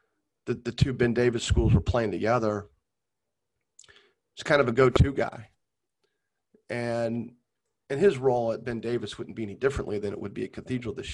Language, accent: English, American